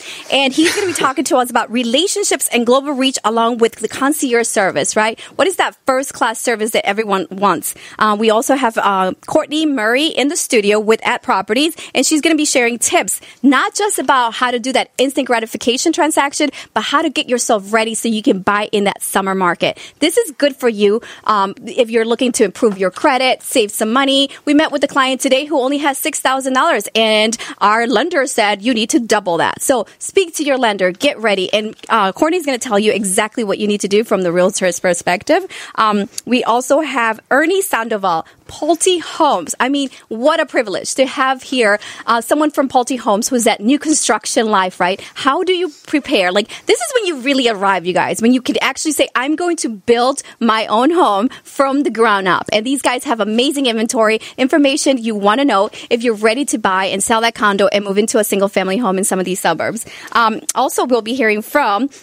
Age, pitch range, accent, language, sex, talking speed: 30-49, 215-285 Hz, American, English, female, 220 wpm